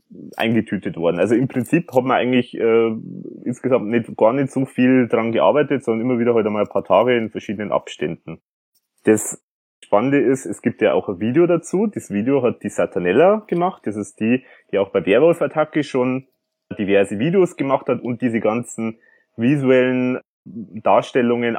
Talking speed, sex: 175 wpm, male